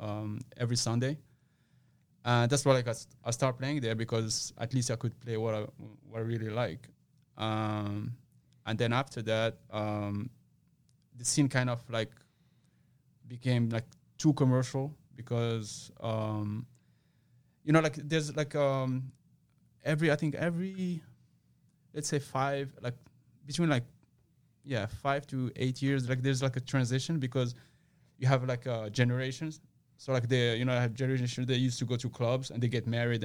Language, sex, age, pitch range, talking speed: English, male, 20-39, 120-145 Hz, 165 wpm